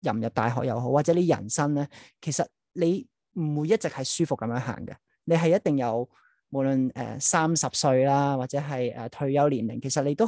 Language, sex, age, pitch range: Chinese, male, 30-49, 130-170 Hz